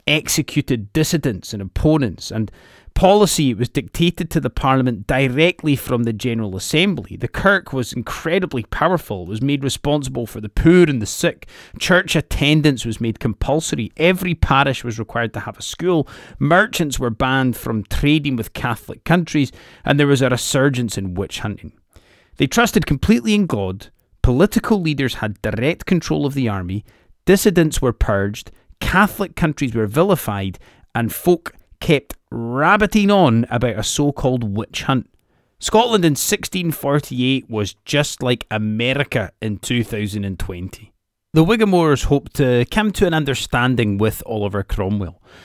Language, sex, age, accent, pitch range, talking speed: English, male, 30-49, British, 110-155 Hz, 145 wpm